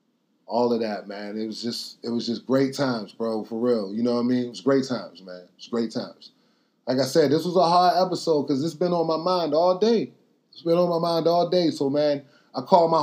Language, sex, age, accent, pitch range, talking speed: English, male, 20-39, American, 135-165 Hz, 265 wpm